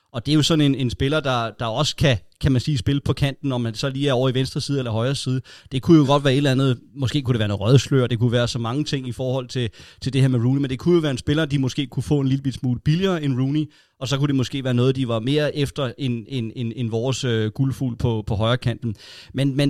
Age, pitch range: 30-49, 130-155 Hz